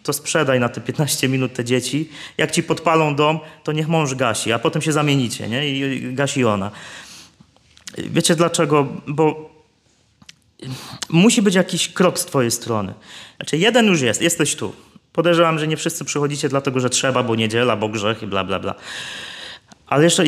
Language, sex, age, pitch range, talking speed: Polish, male, 30-49, 115-155 Hz, 170 wpm